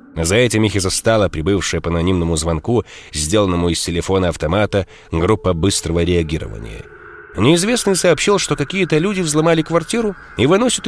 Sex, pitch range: male, 95-155 Hz